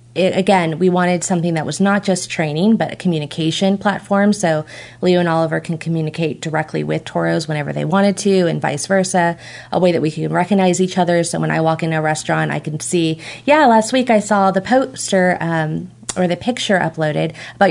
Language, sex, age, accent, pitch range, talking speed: English, female, 30-49, American, 155-190 Hz, 200 wpm